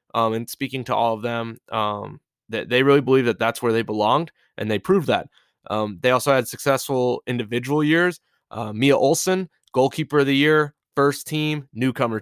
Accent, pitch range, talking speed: American, 115-140 Hz, 185 wpm